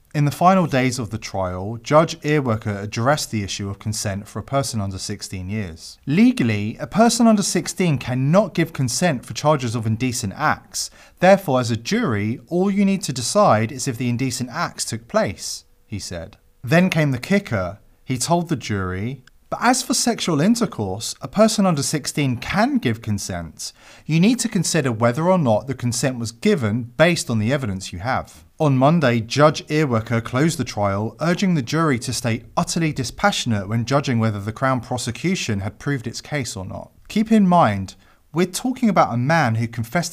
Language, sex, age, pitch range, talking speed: English, male, 30-49, 110-160 Hz, 185 wpm